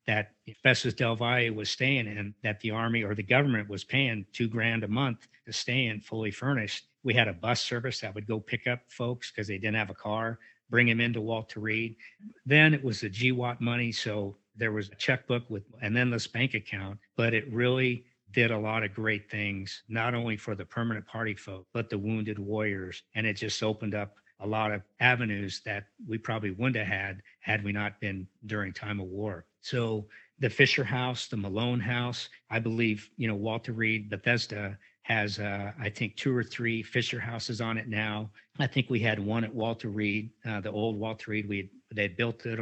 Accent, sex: American, male